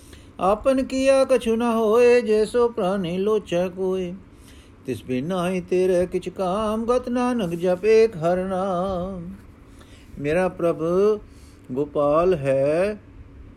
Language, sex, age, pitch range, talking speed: Punjabi, male, 50-69, 130-180 Hz, 95 wpm